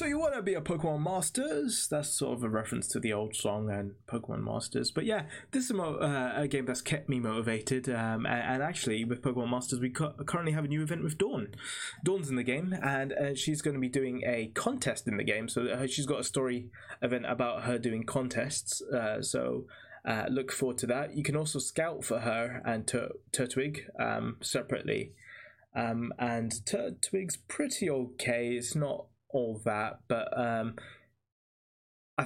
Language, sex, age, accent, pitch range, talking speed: English, male, 20-39, British, 110-140 Hz, 190 wpm